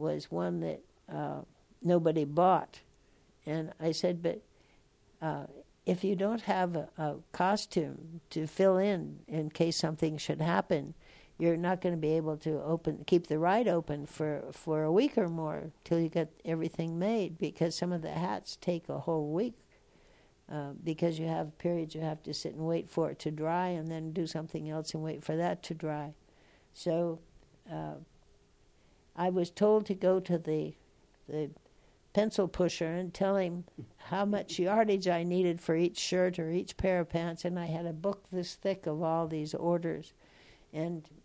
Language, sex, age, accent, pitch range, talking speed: English, female, 60-79, American, 155-180 Hz, 180 wpm